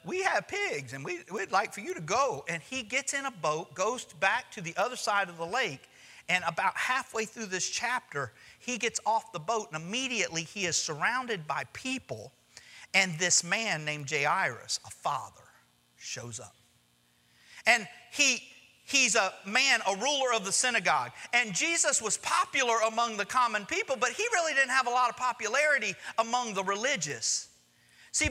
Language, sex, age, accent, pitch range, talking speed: English, male, 50-69, American, 180-265 Hz, 180 wpm